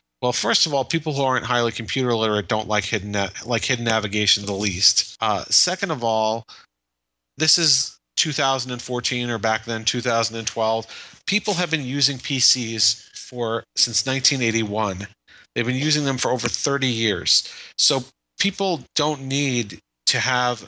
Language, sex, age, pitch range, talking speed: English, male, 40-59, 110-140 Hz, 150 wpm